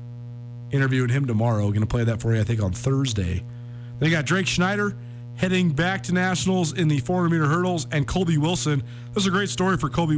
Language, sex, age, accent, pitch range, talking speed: English, male, 40-59, American, 120-175 Hz, 205 wpm